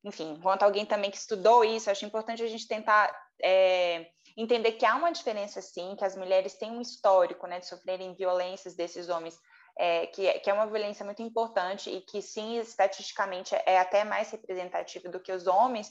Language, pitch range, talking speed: Portuguese, 195-245 Hz, 185 wpm